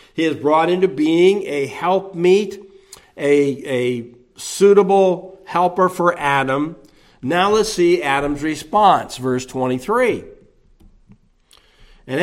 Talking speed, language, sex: 105 wpm, English, male